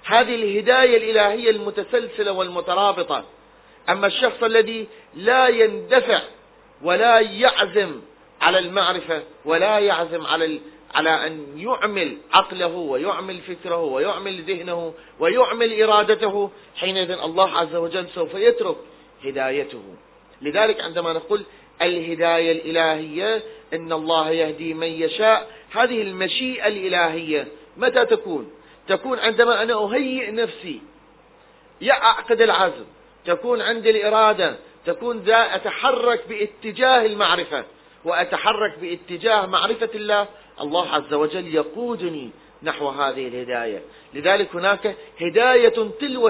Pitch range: 170-230 Hz